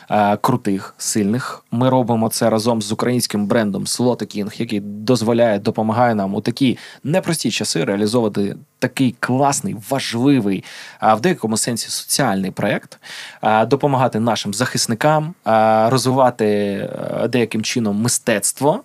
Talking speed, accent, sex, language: 110 wpm, native, male, Ukrainian